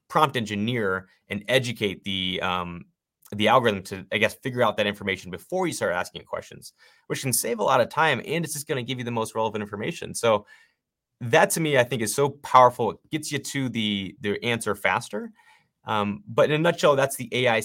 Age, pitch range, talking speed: 30-49, 100-135 Hz, 215 wpm